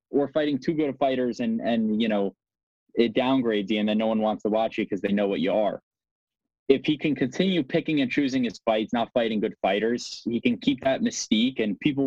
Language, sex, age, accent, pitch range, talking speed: English, male, 20-39, American, 115-185 Hz, 230 wpm